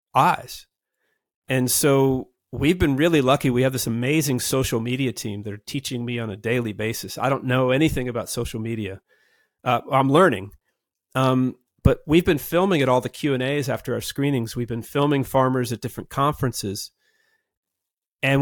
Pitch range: 120-150 Hz